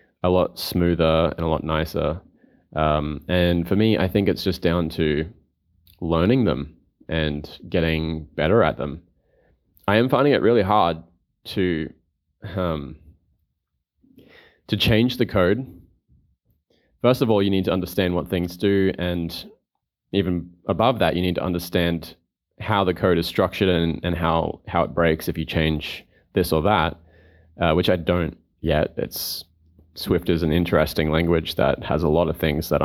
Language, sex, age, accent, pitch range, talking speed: English, male, 20-39, Australian, 80-95 Hz, 165 wpm